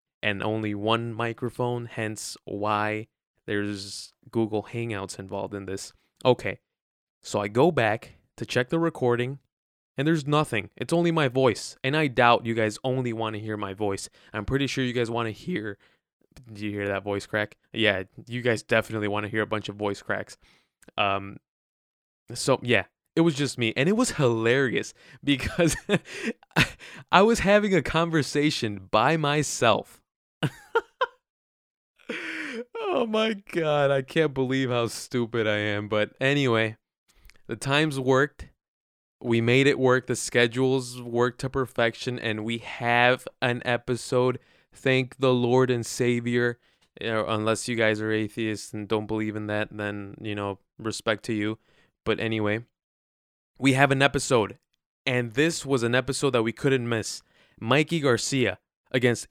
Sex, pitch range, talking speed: male, 110-135 Hz, 155 wpm